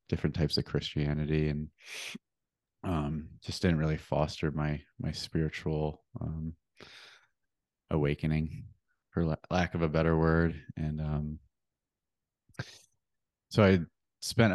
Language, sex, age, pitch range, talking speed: English, male, 30-49, 75-90 Hz, 105 wpm